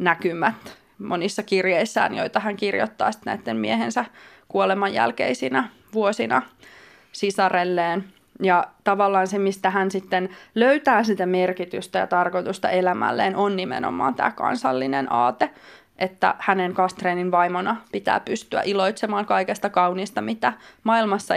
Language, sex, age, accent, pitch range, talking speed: Finnish, female, 20-39, native, 185-210 Hz, 115 wpm